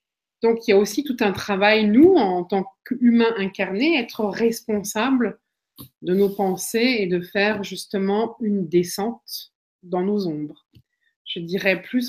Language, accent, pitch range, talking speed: French, French, 175-215 Hz, 150 wpm